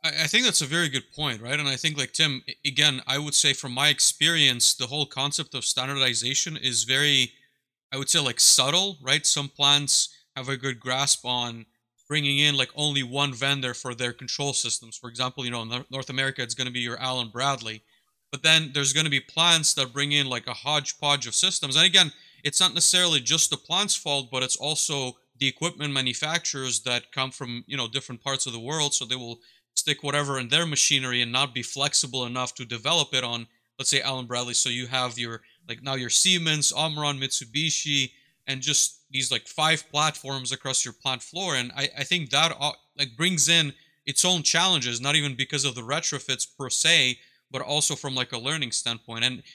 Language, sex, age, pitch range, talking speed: English, male, 30-49, 125-150 Hz, 210 wpm